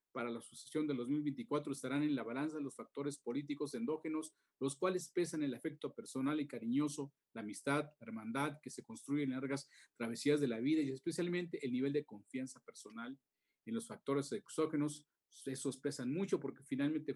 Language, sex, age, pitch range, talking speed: Spanish, male, 40-59, 130-155 Hz, 175 wpm